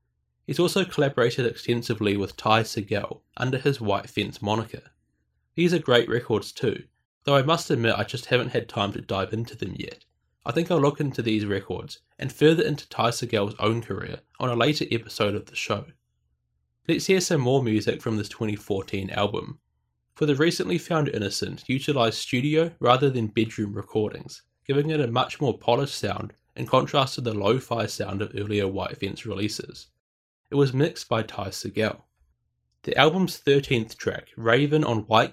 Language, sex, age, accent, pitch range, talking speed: English, male, 20-39, Australian, 100-140 Hz, 175 wpm